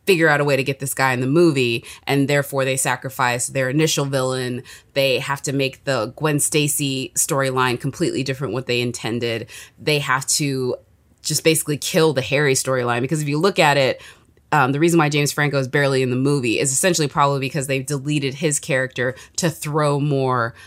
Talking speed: 195 wpm